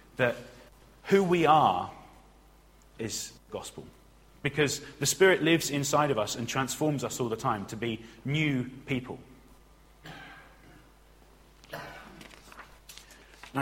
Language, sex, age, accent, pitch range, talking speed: English, male, 30-49, British, 115-145 Hz, 105 wpm